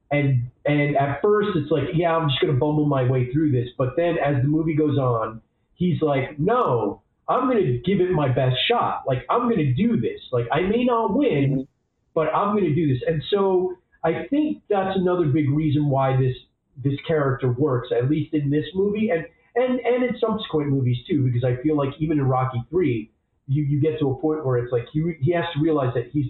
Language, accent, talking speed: English, American, 230 wpm